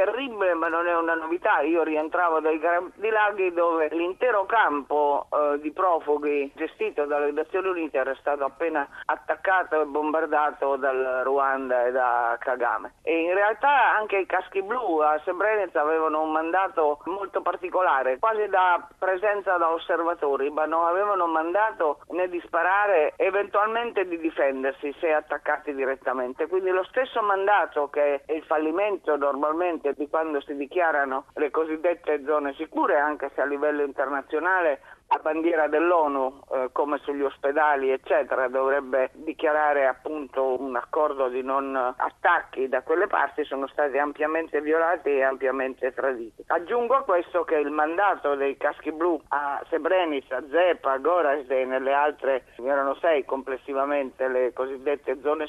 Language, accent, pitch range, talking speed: Italian, native, 140-175 Hz, 145 wpm